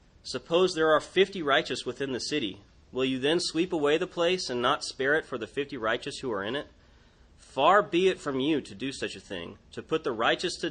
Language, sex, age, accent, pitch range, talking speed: English, male, 30-49, American, 95-150 Hz, 235 wpm